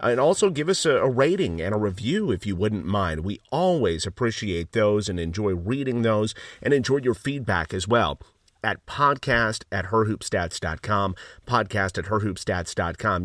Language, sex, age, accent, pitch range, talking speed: English, male, 40-59, American, 95-115 Hz, 155 wpm